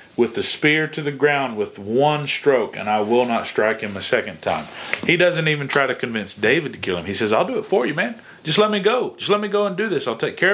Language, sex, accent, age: English, male, American, 40-59